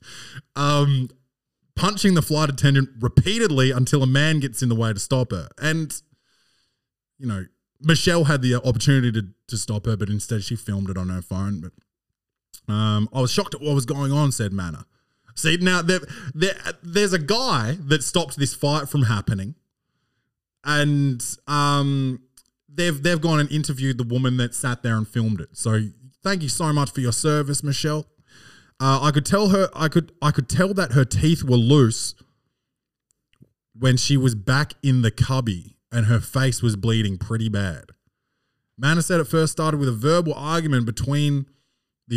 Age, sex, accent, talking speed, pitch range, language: 20-39, male, Australian, 175 wpm, 115-150 Hz, English